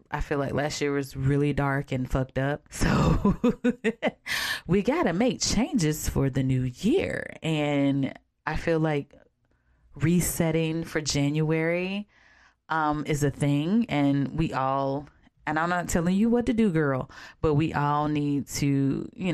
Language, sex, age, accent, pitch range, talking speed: English, female, 10-29, American, 140-175 Hz, 155 wpm